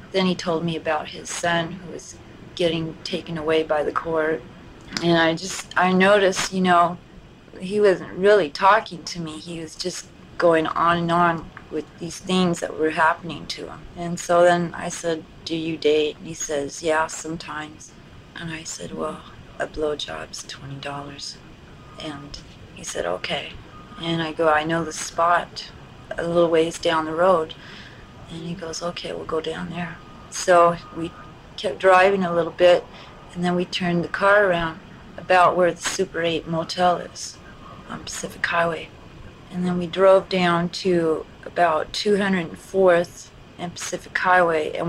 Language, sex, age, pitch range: English, female, 30-49, 160-180 Hz